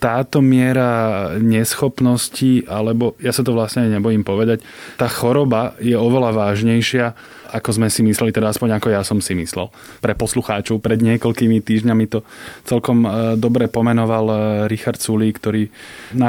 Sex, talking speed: male, 145 wpm